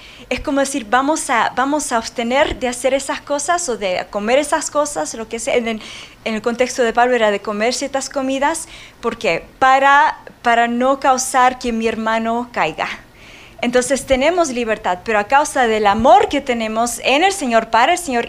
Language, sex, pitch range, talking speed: Spanish, female, 225-285 Hz, 185 wpm